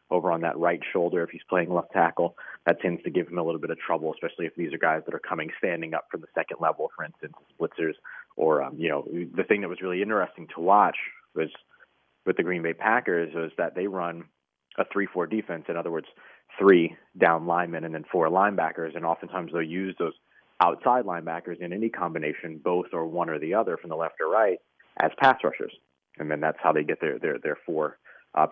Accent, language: American, English